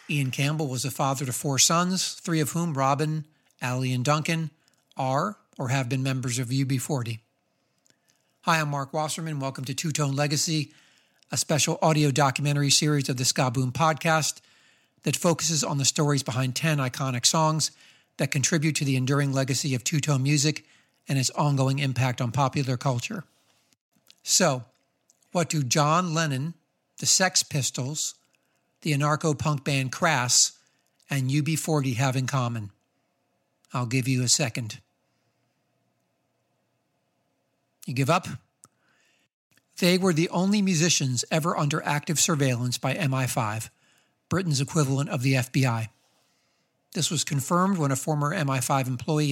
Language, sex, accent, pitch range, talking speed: English, male, American, 135-155 Hz, 135 wpm